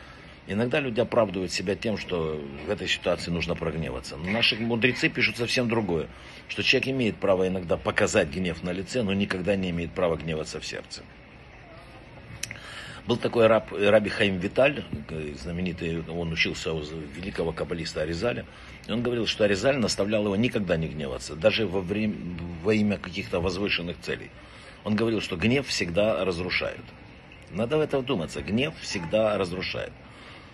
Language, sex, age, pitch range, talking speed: Russian, male, 60-79, 85-115 Hz, 155 wpm